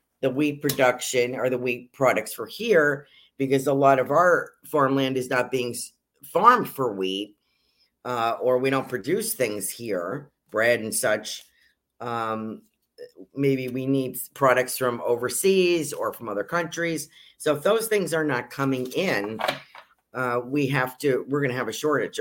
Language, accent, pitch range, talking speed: English, American, 120-150 Hz, 160 wpm